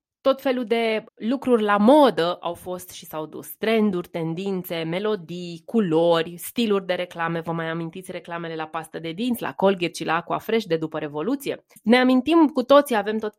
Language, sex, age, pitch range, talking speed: Romanian, female, 20-39, 175-240 Hz, 185 wpm